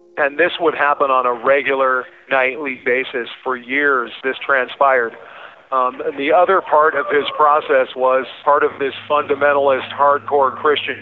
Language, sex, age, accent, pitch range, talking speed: English, male, 40-59, American, 130-150 Hz, 145 wpm